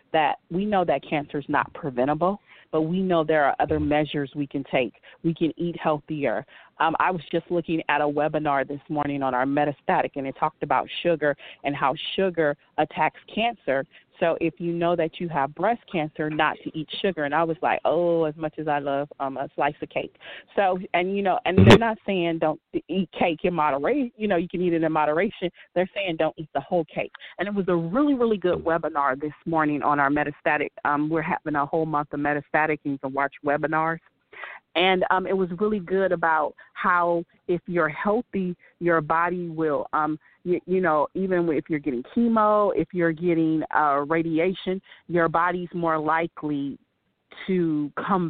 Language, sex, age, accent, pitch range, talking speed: English, female, 30-49, American, 150-180 Hz, 200 wpm